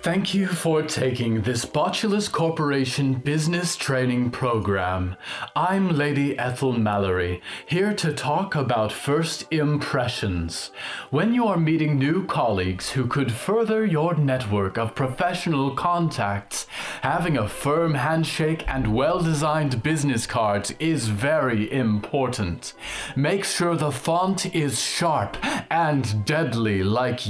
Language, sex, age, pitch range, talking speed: English, male, 30-49, 115-160 Hz, 120 wpm